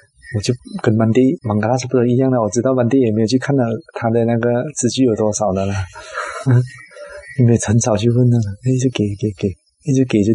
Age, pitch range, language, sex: 20-39, 105-140 Hz, Chinese, male